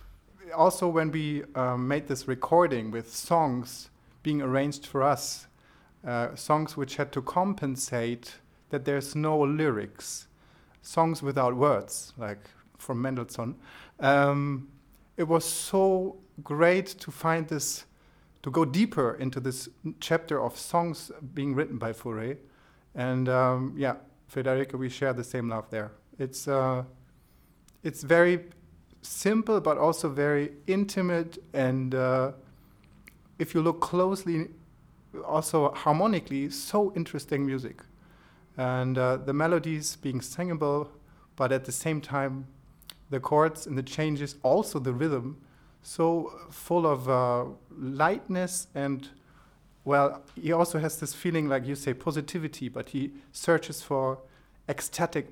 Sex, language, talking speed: male, English, 130 wpm